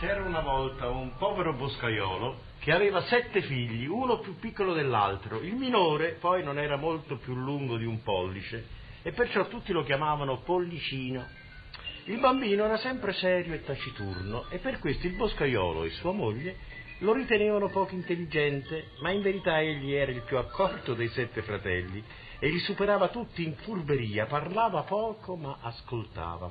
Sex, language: male, Italian